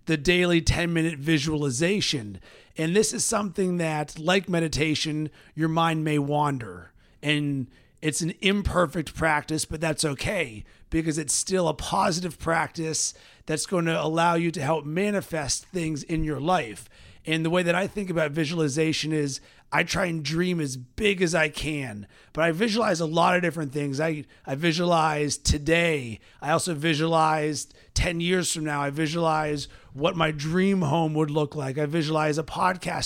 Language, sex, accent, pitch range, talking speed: English, male, American, 150-175 Hz, 165 wpm